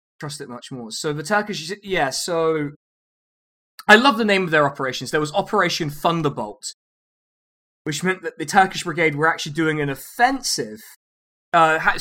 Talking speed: 160 wpm